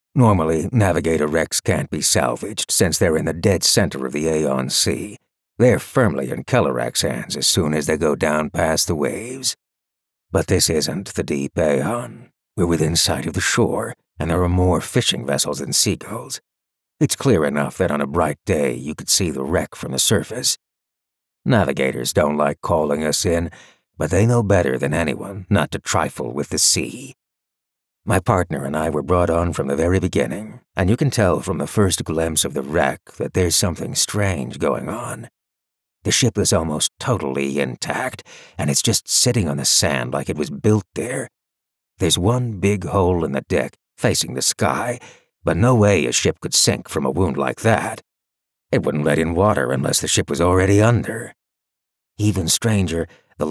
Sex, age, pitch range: male, 60-79, 70-100 Hz